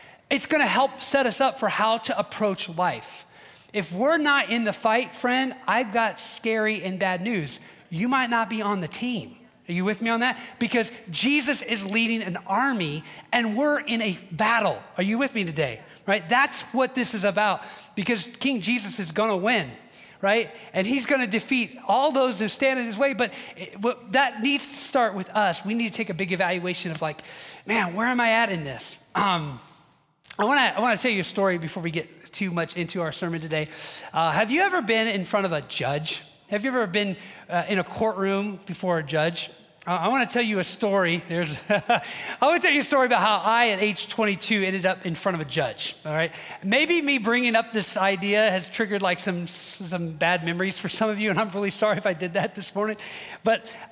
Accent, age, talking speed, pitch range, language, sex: American, 30-49, 215 wpm, 185-235 Hz, English, male